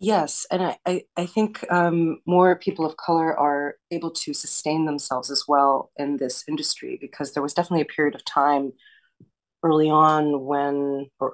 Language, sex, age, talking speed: English, female, 30-49, 175 wpm